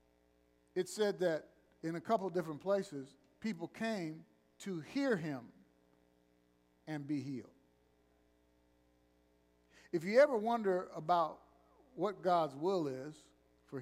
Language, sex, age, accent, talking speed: English, male, 50-69, American, 115 wpm